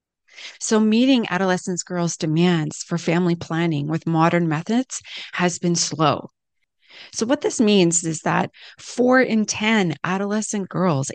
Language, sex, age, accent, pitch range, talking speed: English, female, 30-49, American, 155-200 Hz, 135 wpm